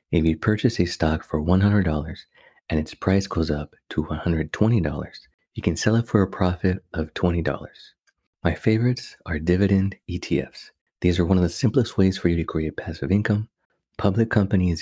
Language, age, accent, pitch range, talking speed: English, 30-49, American, 80-100 Hz, 175 wpm